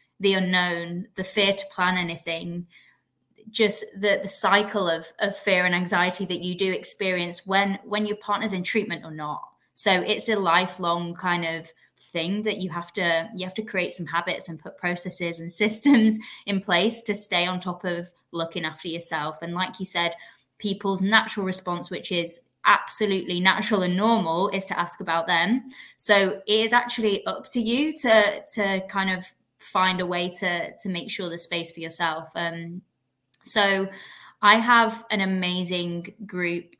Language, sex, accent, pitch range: English, female, British, 175-210 Hz